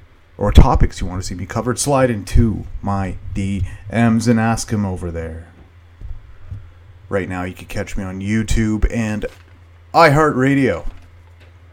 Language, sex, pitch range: English, male, 90-110 Hz